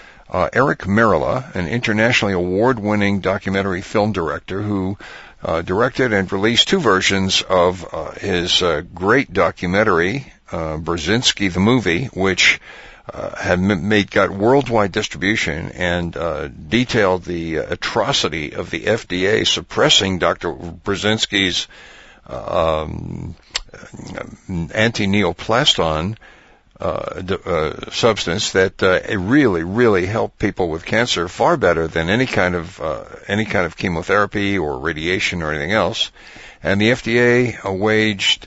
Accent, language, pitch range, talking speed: American, English, 90-110 Hz, 125 wpm